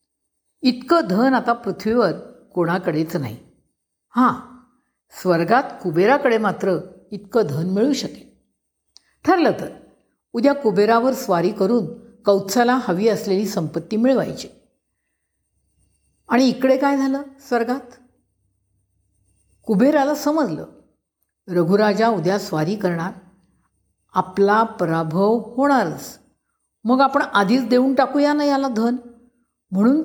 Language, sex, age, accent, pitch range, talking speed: Marathi, female, 60-79, native, 175-250 Hz, 100 wpm